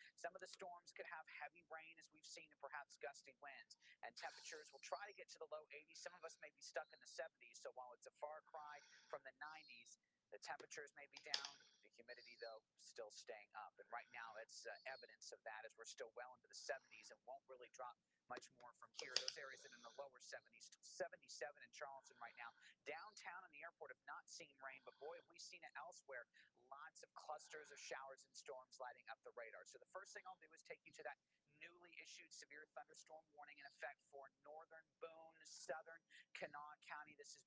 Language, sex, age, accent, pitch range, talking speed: English, male, 30-49, American, 140-175 Hz, 225 wpm